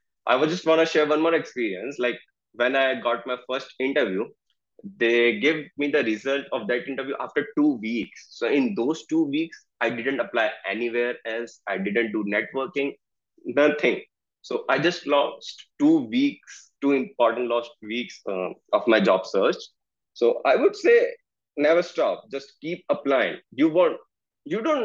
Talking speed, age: 170 wpm, 20-39